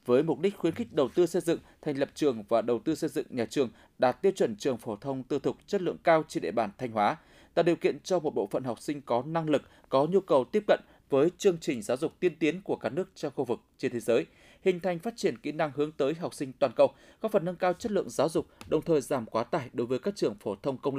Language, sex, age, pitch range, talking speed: Vietnamese, male, 20-39, 135-185 Hz, 285 wpm